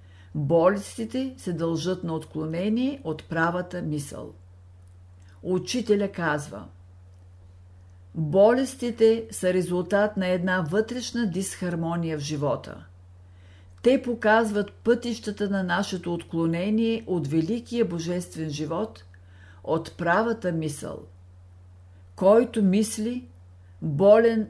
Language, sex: Bulgarian, female